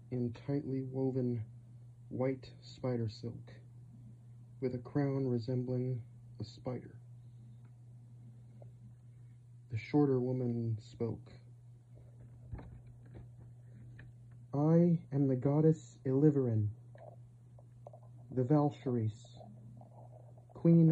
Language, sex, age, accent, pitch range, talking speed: English, male, 40-59, American, 120-125 Hz, 70 wpm